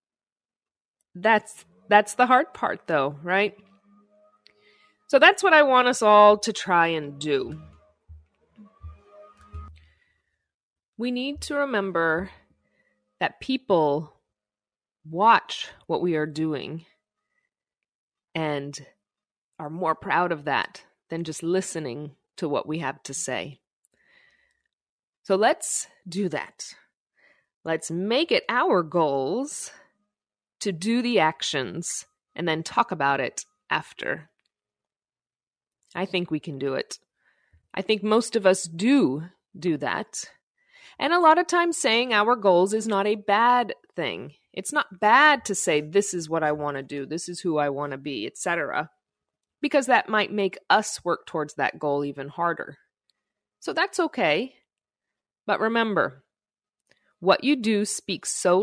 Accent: American